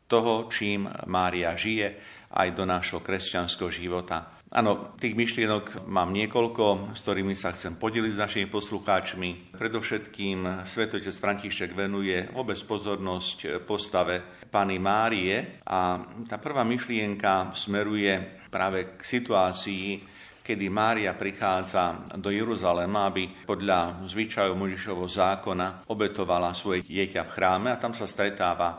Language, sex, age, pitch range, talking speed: Slovak, male, 50-69, 90-105 Hz, 120 wpm